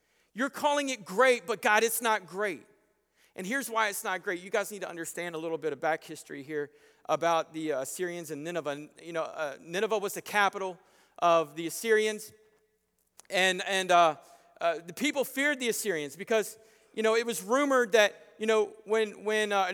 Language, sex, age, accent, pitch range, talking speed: English, male, 40-59, American, 205-265 Hz, 190 wpm